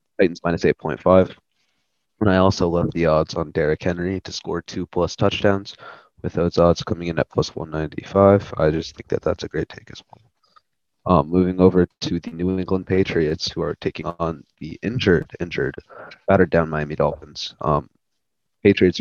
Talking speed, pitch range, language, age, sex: 175 wpm, 85-95 Hz, English, 20-39, male